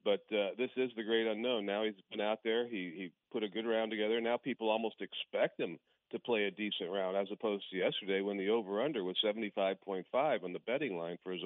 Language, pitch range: English, 100-120 Hz